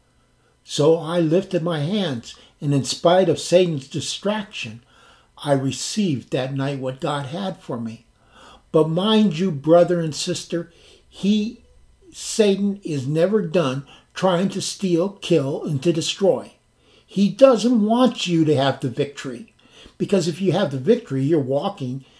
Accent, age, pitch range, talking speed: American, 60-79, 135-190 Hz, 145 wpm